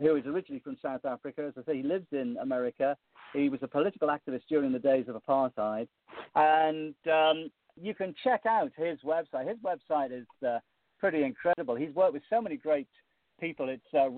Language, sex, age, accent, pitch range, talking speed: English, male, 50-69, British, 140-185 Hz, 195 wpm